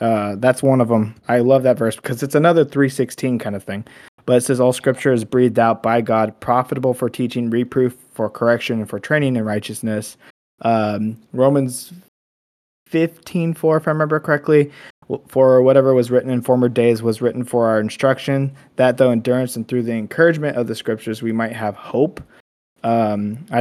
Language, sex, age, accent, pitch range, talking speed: English, male, 20-39, American, 110-130 Hz, 185 wpm